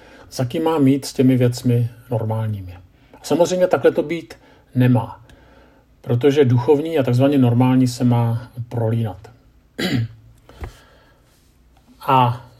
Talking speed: 100 wpm